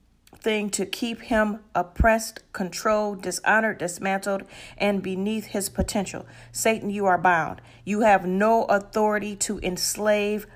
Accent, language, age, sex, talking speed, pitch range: American, English, 40-59, female, 125 wpm, 175-215 Hz